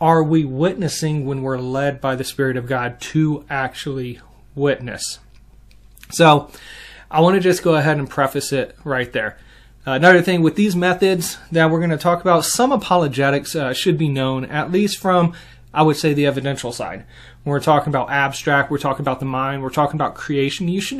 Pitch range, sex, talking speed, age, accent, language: 135-165 Hz, male, 195 wpm, 30-49, American, English